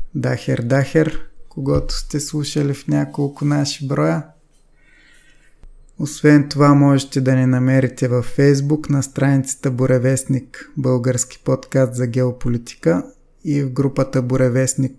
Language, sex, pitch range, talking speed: Bulgarian, male, 125-140 Hz, 110 wpm